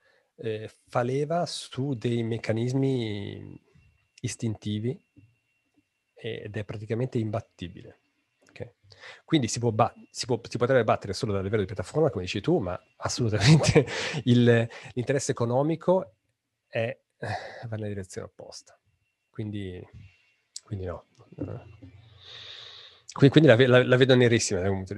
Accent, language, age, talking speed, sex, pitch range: native, Italian, 40-59, 125 wpm, male, 100-120 Hz